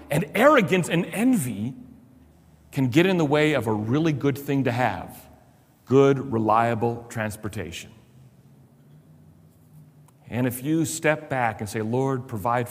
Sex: male